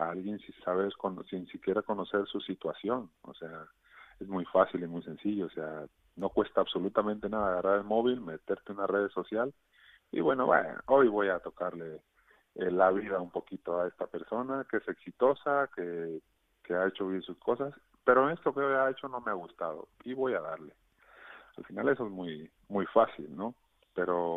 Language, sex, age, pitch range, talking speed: Spanish, male, 30-49, 90-105 Hz, 190 wpm